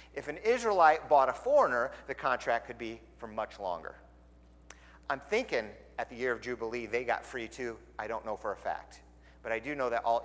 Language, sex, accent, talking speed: English, male, American, 210 wpm